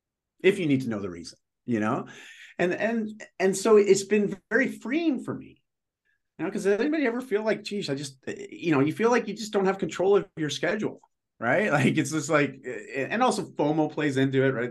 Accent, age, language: American, 30-49, English